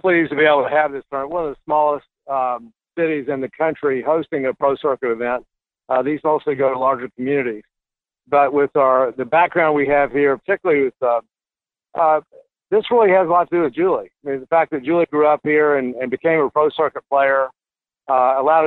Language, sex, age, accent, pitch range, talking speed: English, male, 50-69, American, 130-155 Hz, 220 wpm